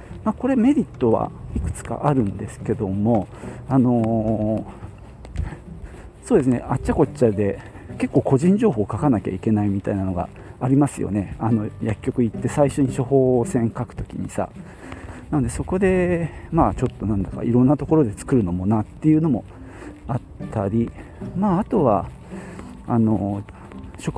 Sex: male